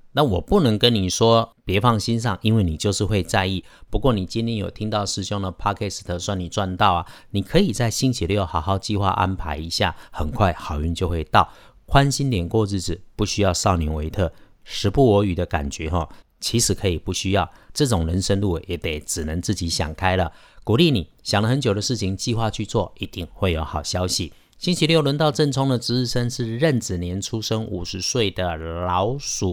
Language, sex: Chinese, male